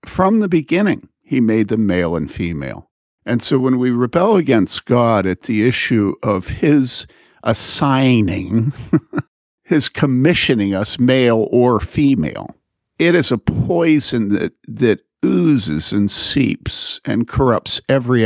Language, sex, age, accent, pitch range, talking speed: English, male, 50-69, American, 110-140 Hz, 130 wpm